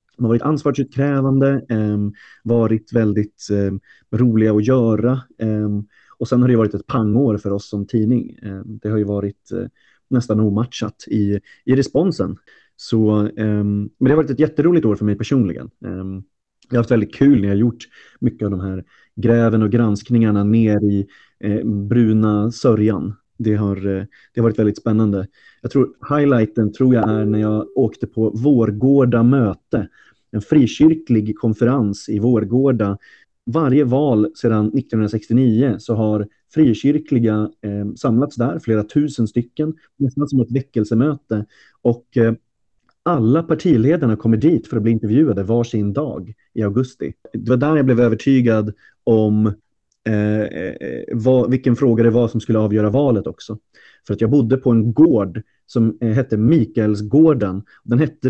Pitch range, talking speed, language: 105-130 Hz, 160 wpm, Swedish